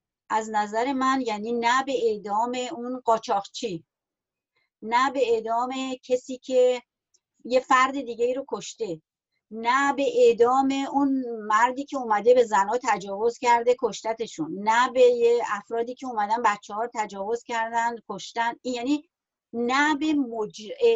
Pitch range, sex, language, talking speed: 230-285 Hz, female, Persian, 135 wpm